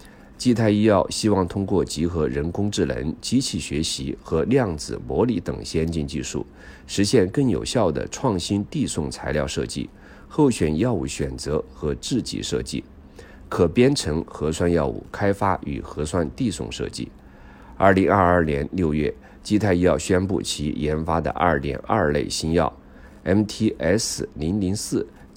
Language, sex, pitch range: Chinese, male, 70-95 Hz